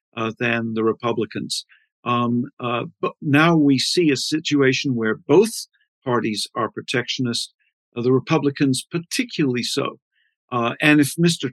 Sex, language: male, English